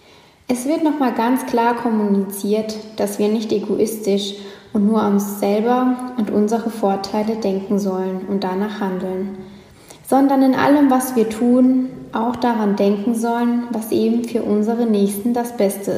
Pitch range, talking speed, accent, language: 200-240 Hz, 150 wpm, German, German